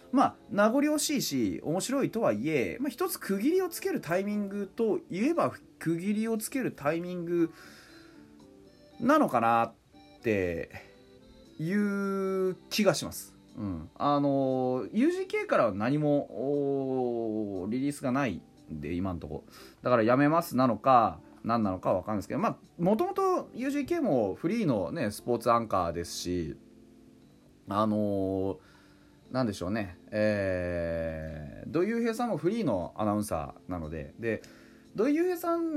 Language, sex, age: Japanese, male, 30-49